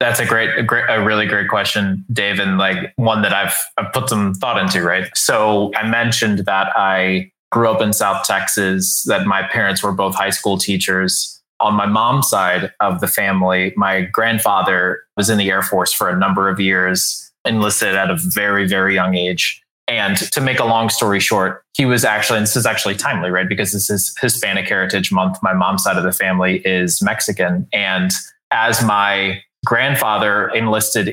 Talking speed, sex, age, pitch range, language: 190 wpm, male, 20-39, 95-115 Hz, English